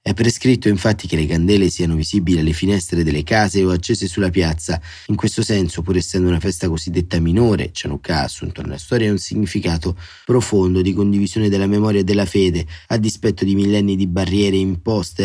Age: 30-49